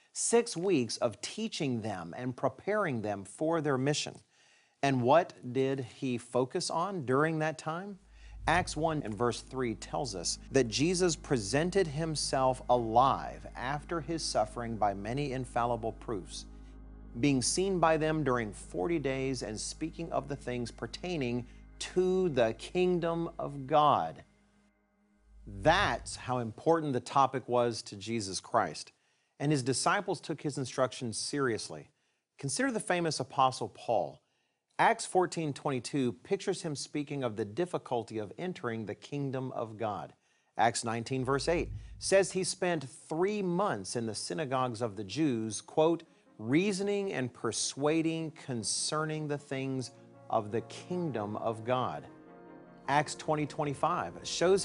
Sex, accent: male, American